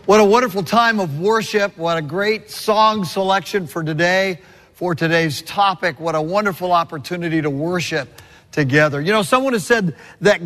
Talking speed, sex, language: 165 wpm, male, English